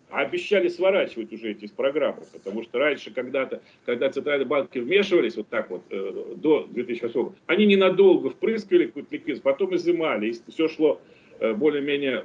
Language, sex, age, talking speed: Russian, male, 40-59, 140 wpm